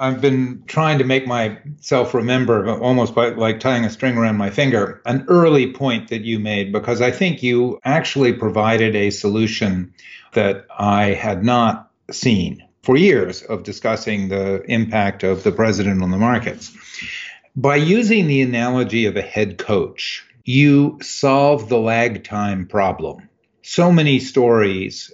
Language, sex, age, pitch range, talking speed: English, male, 50-69, 105-135 Hz, 155 wpm